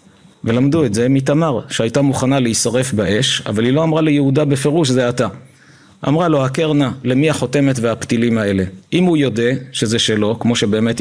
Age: 50-69